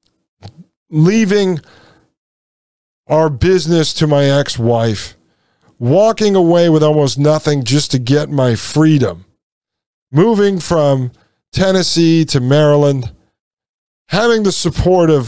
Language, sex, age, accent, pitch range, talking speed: English, male, 50-69, American, 130-165 Hz, 100 wpm